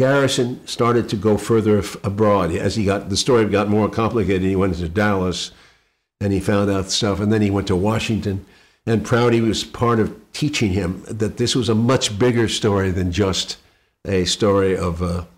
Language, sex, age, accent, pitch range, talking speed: English, male, 60-79, American, 90-110 Hz, 195 wpm